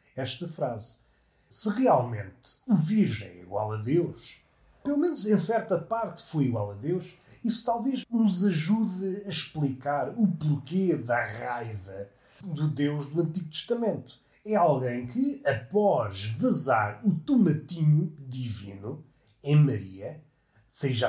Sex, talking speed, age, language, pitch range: male, 130 wpm, 30-49, Portuguese, 130-195 Hz